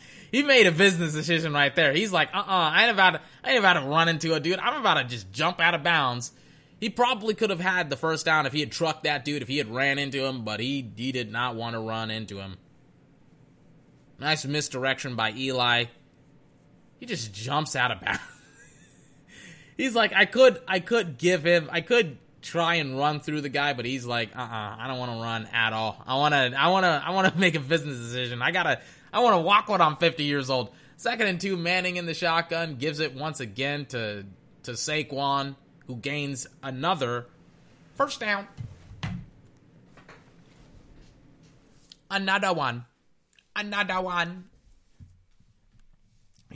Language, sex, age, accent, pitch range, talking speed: English, male, 20-39, American, 125-170 Hz, 185 wpm